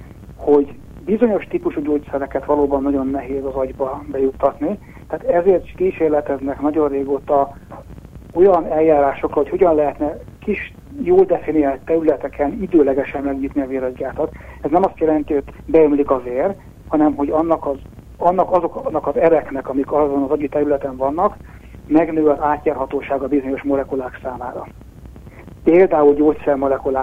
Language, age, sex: Hungarian, 60-79, male